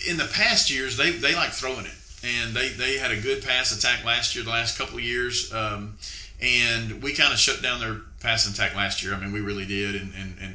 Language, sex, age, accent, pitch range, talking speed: English, male, 40-59, American, 100-120 Hz, 250 wpm